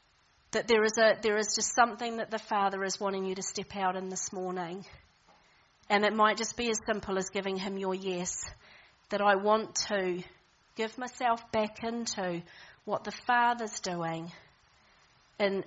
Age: 40-59